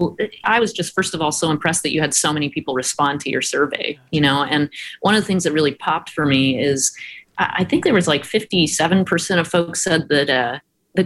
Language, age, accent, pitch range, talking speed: English, 30-49, American, 145-180 Hz, 240 wpm